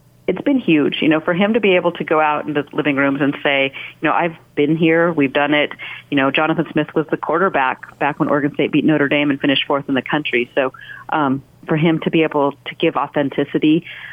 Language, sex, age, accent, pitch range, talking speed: English, female, 40-59, American, 145-165 Hz, 240 wpm